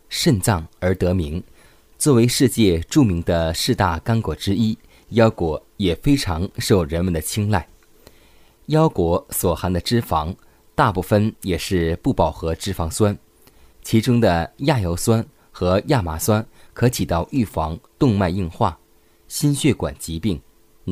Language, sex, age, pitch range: Chinese, male, 20-39, 85-115 Hz